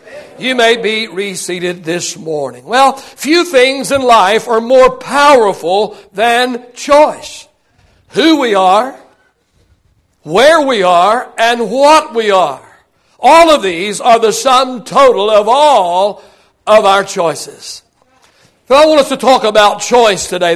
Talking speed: 135 wpm